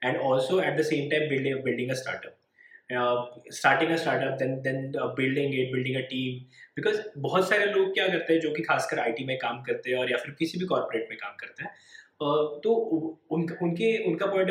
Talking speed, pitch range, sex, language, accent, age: 155 wpm, 135-180 Hz, male, English, Indian, 20-39